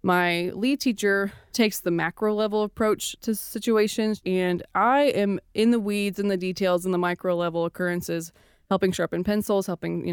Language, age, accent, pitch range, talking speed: English, 20-39, American, 180-220 Hz, 170 wpm